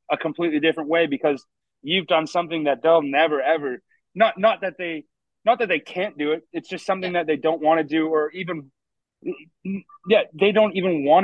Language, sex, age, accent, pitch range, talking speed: English, male, 30-49, American, 145-180 Hz, 205 wpm